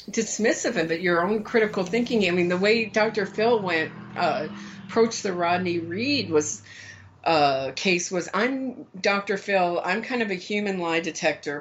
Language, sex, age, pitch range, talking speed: English, female, 50-69, 170-225 Hz, 170 wpm